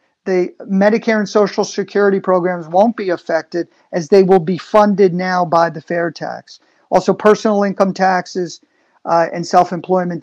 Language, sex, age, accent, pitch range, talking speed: English, male, 50-69, American, 180-205 Hz, 155 wpm